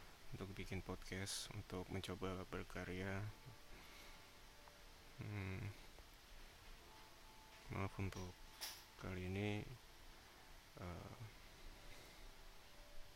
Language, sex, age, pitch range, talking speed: Indonesian, male, 20-39, 90-105 Hz, 55 wpm